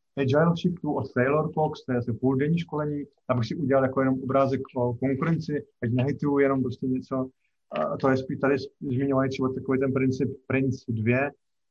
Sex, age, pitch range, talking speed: male, 30-49, 130-165 Hz, 165 wpm